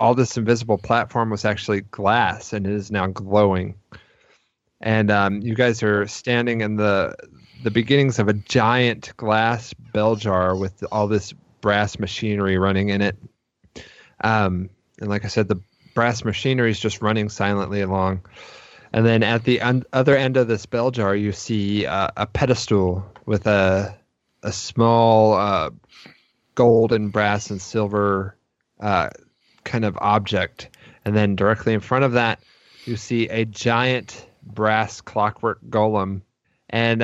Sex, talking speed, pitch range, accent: male, 150 wpm, 100-115 Hz, American